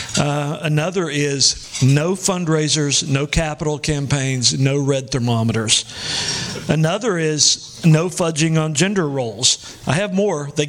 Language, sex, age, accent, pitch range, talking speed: English, male, 50-69, American, 140-165 Hz, 125 wpm